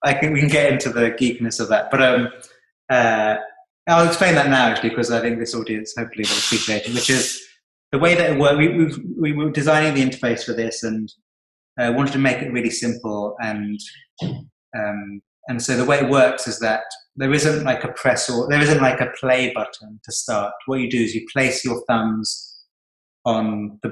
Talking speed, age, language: 210 wpm, 30-49, English